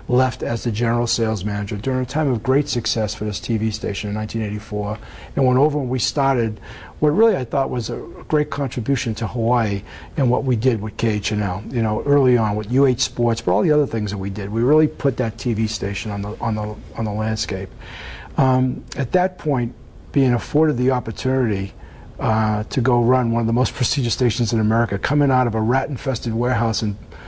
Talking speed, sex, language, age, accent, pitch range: 215 wpm, male, English, 50-69, American, 110-130 Hz